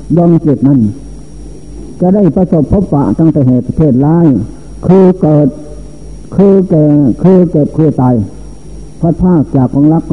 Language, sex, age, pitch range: Thai, male, 60-79, 140-170 Hz